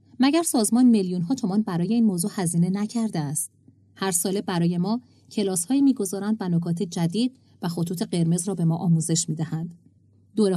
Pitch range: 165-205 Hz